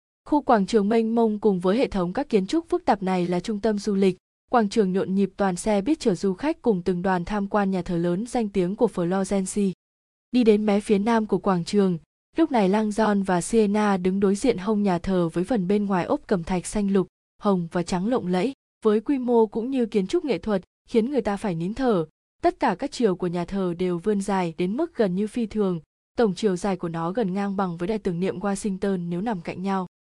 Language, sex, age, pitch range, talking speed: Vietnamese, female, 20-39, 185-230 Hz, 245 wpm